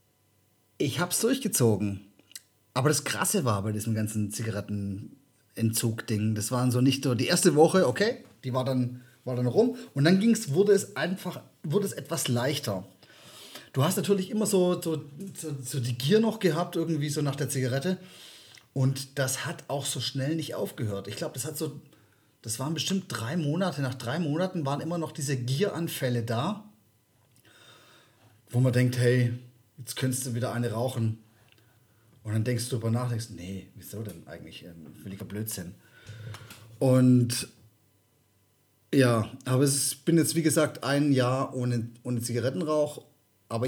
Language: German